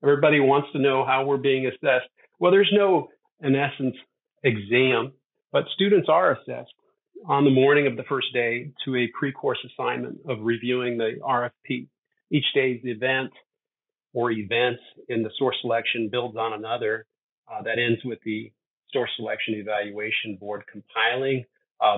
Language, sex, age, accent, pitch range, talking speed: English, male, 50-69, American, 110-135 Hz, 155 wpm